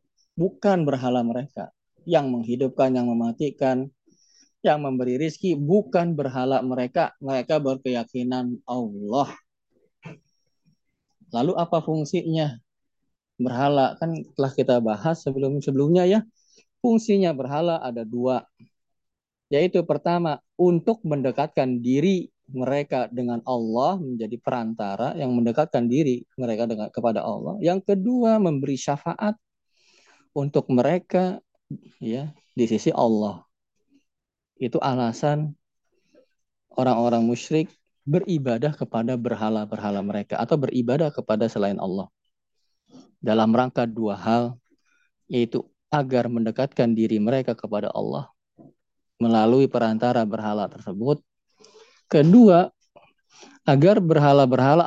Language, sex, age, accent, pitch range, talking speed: Indonesian, male, 20-39, native, 120-160 Hz, 95 wpm